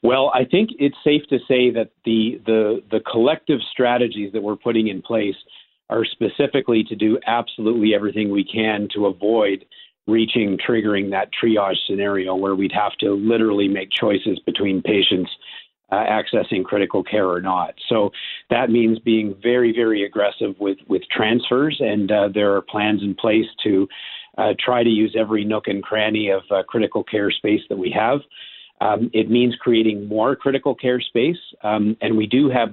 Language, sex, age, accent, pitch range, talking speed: English, male, 50-69, American, 100-115 Hz, 175 wpm